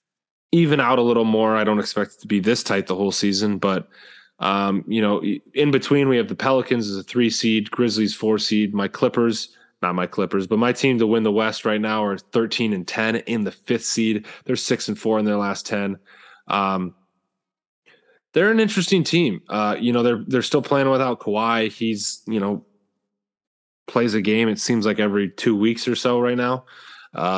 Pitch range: 100-120 Hz